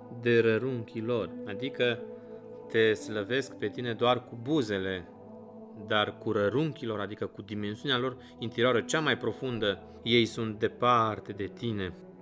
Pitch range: 105-130 Hz